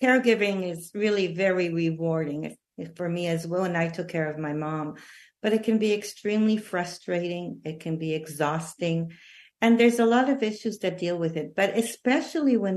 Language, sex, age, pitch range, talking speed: English, female, 50-69, 170-225 Hz, 185 wpm